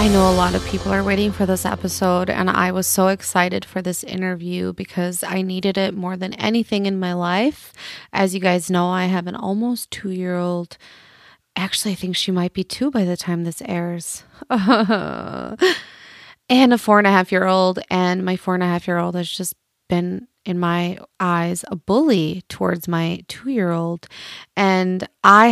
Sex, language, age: female, English, 20-39